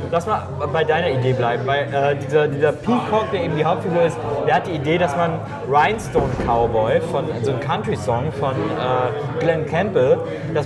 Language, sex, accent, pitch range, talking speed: German, male, German, 145-185 Hz, 190 wpm